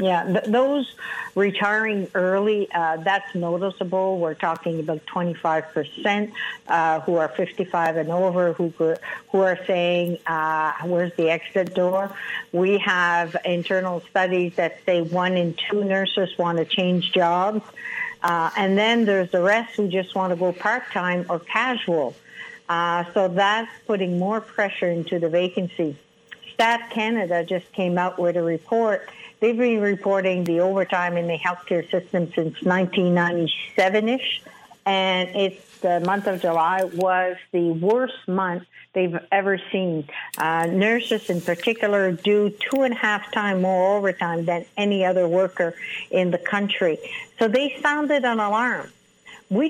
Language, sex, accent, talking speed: English, female, American, 145 wpm